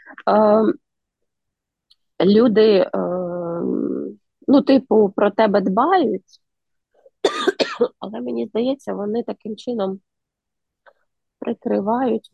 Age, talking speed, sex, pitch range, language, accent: 20-39, 75 wpm, female, 200-250 Hz, Ukrainian, native